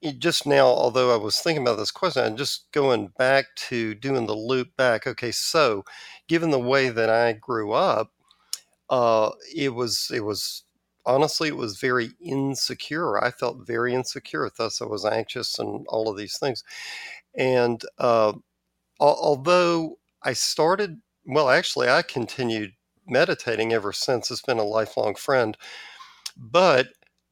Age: 50-69